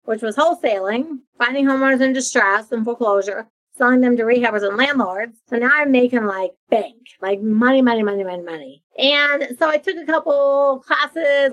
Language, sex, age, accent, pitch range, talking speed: English, female, 40-59, American, 230-285 Hz, 175 wpm